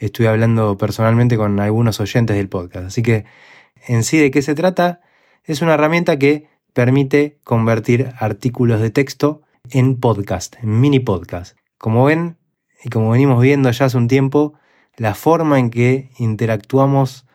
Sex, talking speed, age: male, 155 wpm, 20-39